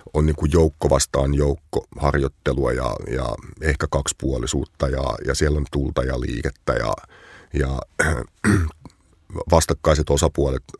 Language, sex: Finnish, male